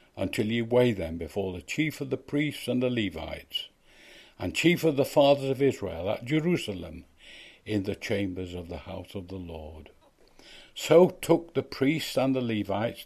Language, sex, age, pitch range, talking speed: English, male, 60-79, 100-130 Hz, 175 wpm